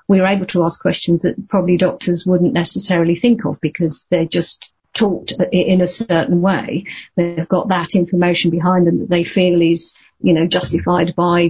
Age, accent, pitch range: 50-69, British, 170-190 Hz